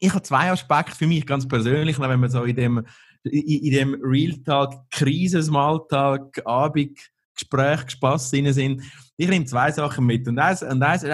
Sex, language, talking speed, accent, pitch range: male, German, 165 wpm, Austrian, 130-165 Hz